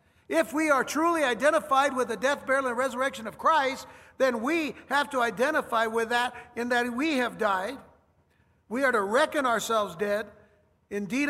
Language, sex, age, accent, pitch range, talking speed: English, male, 60-79, American, 185-265 Hz, 170 wpm